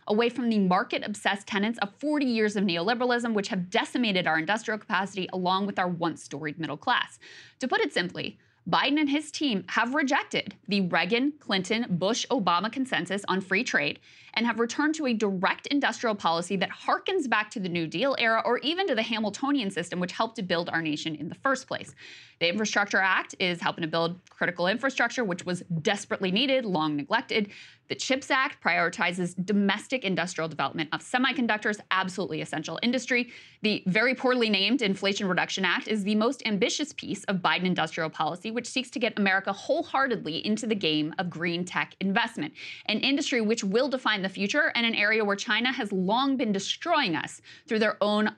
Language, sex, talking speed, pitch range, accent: English, female, 180 wpm, 180-240 Hz, American